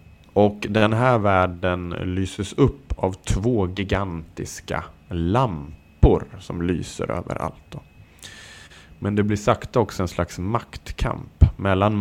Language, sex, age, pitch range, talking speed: Swedish, male, 30-49, 85-115 Hz, 120 wpm